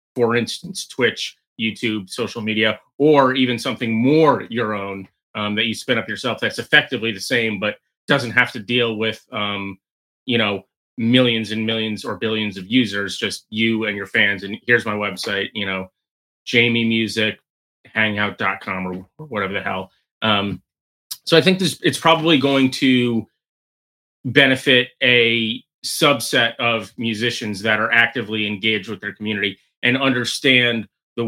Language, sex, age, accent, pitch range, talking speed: English, male, 30-49, American, 105-125 Hz, 150 wpm